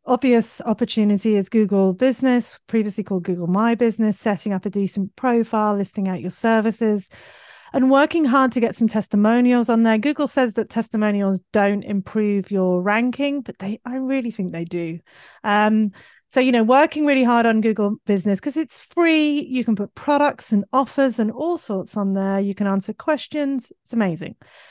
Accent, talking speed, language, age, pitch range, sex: British, 175 wpm, English, 30-49, 205-255 Hz, female